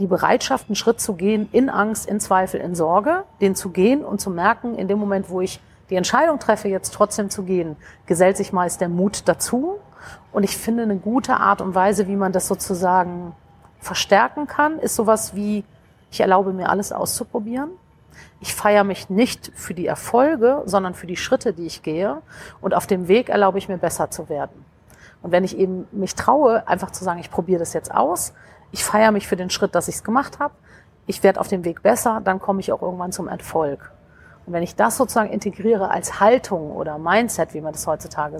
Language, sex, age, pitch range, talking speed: German, female, 40-59, 180-220 Hz, 215 wpm